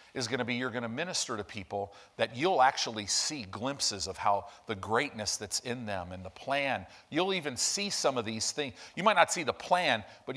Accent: American